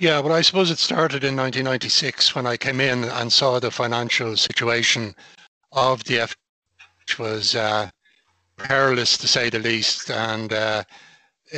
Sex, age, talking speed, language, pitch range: male, 60-79, 155 wpm, English, 115-130 Hz